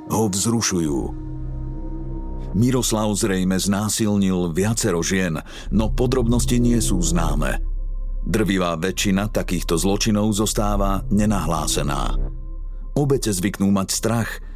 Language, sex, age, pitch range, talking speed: Slovak, male, 50-69, 85-115 Hz, 90 wpm